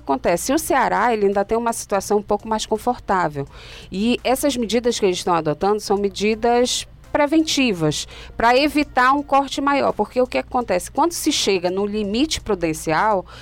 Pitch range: 175-235 Hz